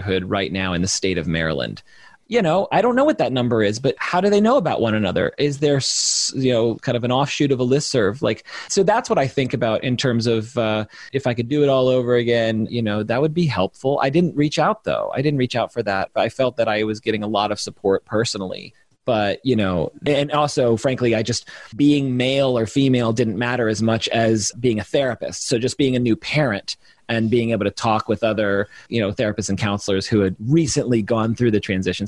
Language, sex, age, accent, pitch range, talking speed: English, male, 30-49, American, 110-145 Hz, 240 wpm